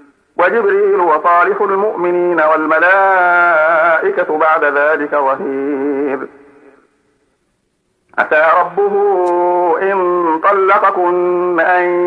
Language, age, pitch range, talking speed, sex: Arabic, 50-69, 145-180 Hz, 60 wpm, male